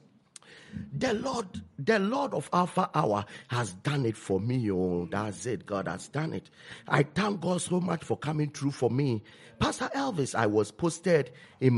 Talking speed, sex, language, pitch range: 180 wpm, male, English, 105-155 Hz